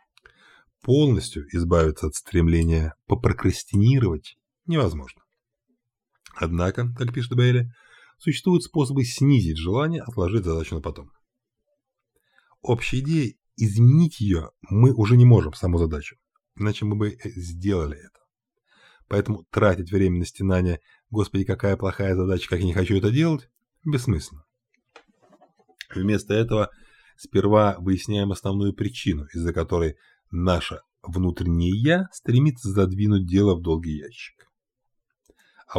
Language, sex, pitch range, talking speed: Russian, male, 85-120 Hz, 110 wpm